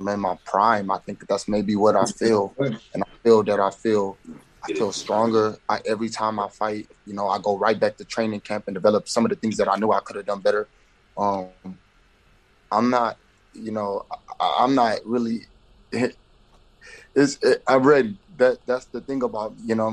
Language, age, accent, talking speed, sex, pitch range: English, 20-39, American, 200 wpm, male, 105-140 Hz